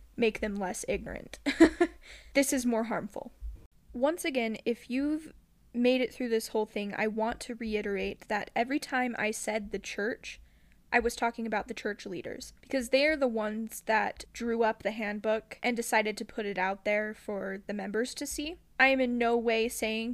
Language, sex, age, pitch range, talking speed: English, female, 10-29, 210-245 Hz, 190 wpm